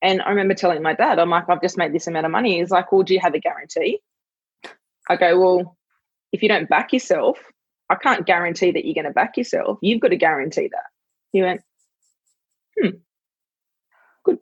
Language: English